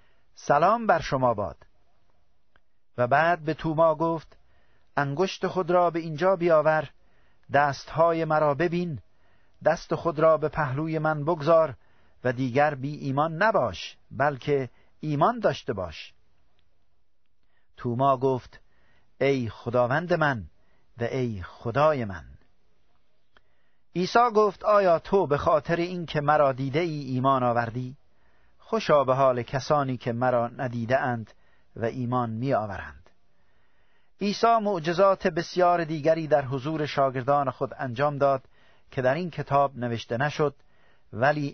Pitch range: 120-160 Hz